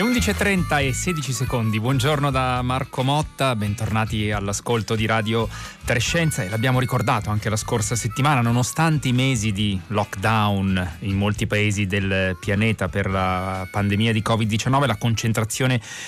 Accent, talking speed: native, 140 wpm